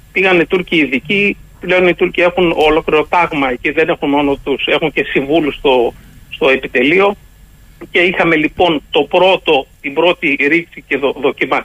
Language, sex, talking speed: Greek, male, 155 wpm